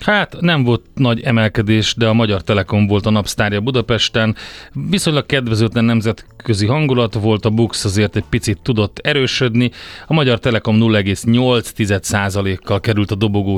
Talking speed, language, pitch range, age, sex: 140 wpm, Hungarian, 105-120 Hz, 30-49, male